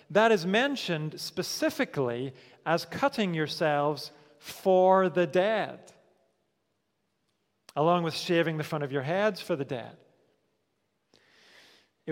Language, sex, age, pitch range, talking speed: English, male, 40-59, 150-195 Hz, 110 wpm